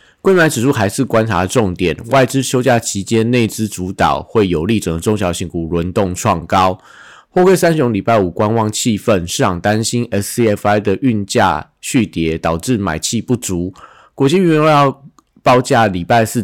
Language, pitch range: Chinese, 95-120 Hz